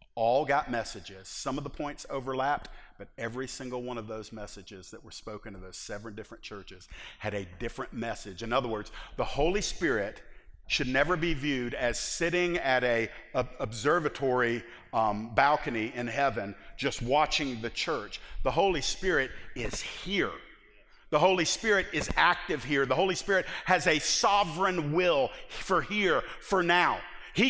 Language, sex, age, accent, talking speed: English, male, 50-69, American, 160 wpm